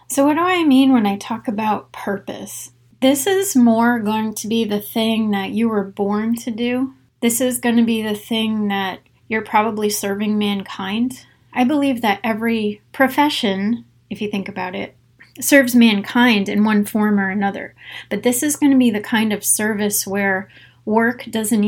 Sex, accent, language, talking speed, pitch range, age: female, American, English, 185 wpm, 205-240 Hz, 30-49